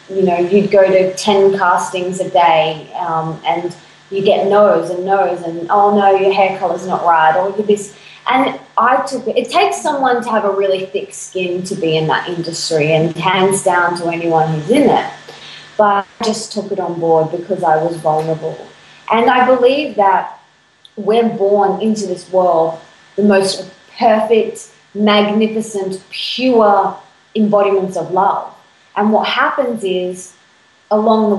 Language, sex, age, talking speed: English, female, 20-39, 165 wpm